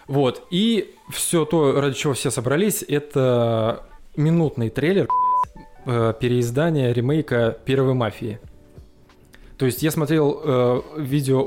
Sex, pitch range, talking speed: male, 115-145 Hz, 110 wpm